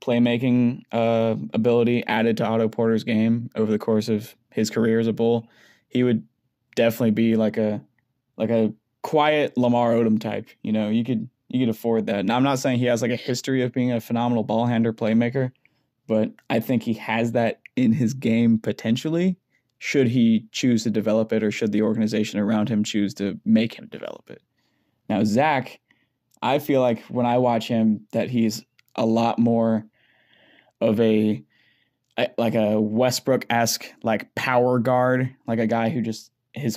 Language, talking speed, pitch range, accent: English, 180 wpm, 110-125 Hz, American